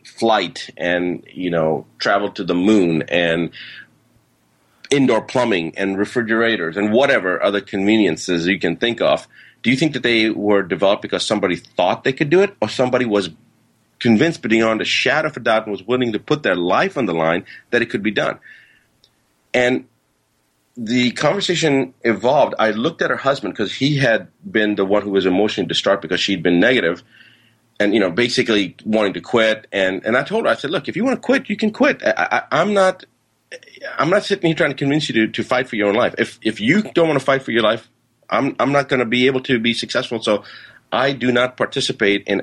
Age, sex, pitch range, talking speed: 40-59, male, 100-135 Hz, 215 wpm